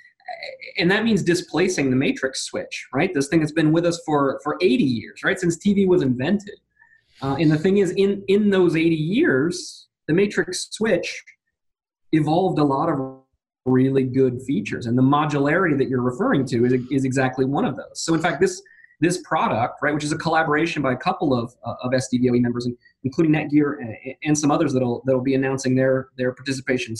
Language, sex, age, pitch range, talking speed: English, male, 20-39, 130-165 Hz, 195 wpm